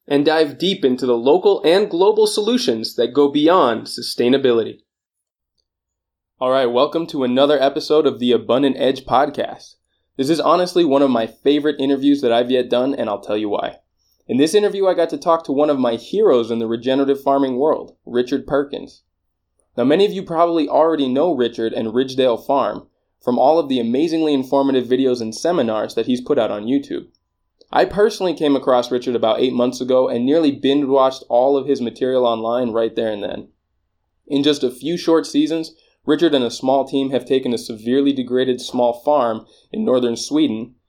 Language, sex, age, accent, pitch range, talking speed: English, male, 20-39, American, 120-150 Hz, 190 wpm